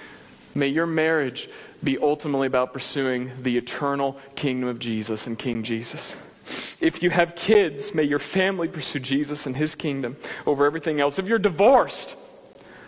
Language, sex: English, male